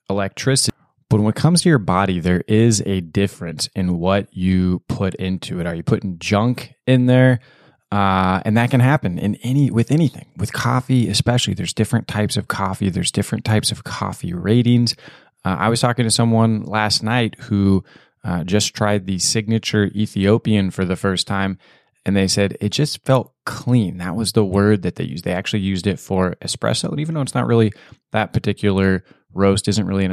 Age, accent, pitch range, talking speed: 20-39, American, 95-115 Hz, 195 wpm